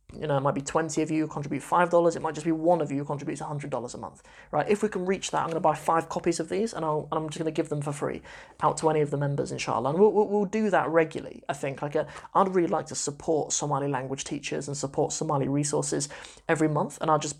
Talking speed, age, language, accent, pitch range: 295 wpm, 20-39, English, British, 145-165 Hz